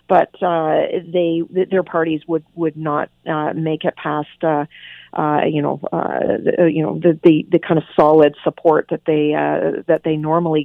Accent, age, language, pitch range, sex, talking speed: American, 40-59, English, 160-190 Hz, female, 180 wpm